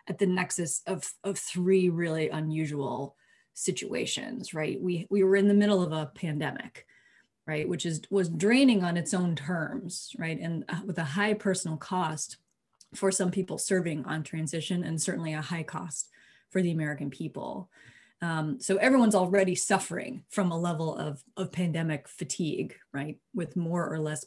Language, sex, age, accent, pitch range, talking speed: English, female, 20-39, American, 160-195 Hz, 165 wpm